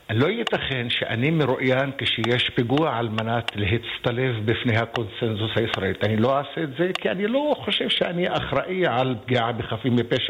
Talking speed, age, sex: 155 wpm, 50-69, male